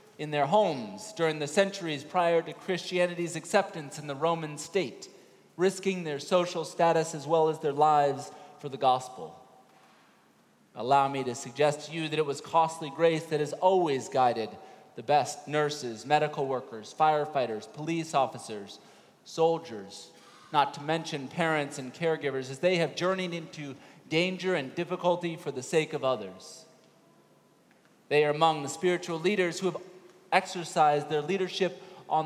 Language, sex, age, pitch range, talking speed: English, male, 30-49, 145-175 Hz, 150 wpm